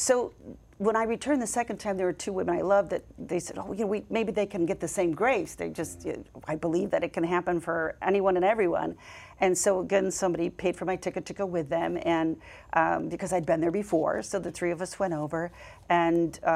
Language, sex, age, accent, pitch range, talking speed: English, female, 40-59, American, 165-185 Hz, 235 wpm